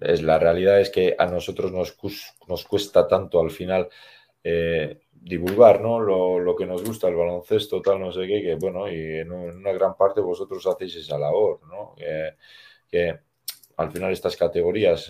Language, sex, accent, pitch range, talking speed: Spanish, male, Spanish, 85-115 Hz, 180 wpm